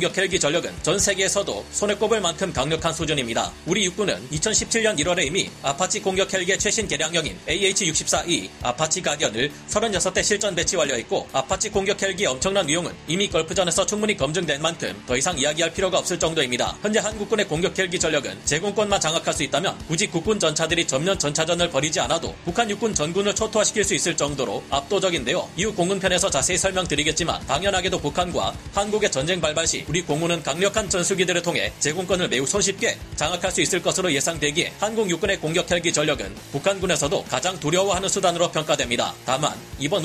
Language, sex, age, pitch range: Korean, male, 40-59, 155-195 Hz